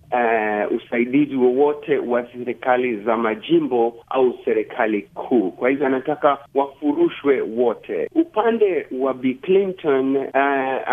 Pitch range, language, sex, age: 135-195 Hz, Swahili, male, 50-69